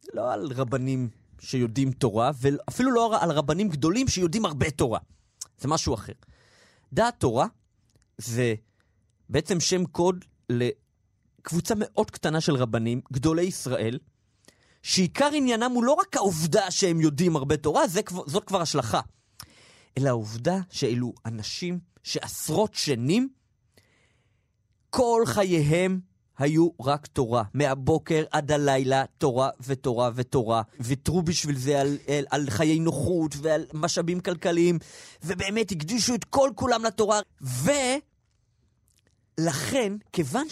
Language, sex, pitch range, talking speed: Hebrew, male, 130-210 Hz, 115 wpm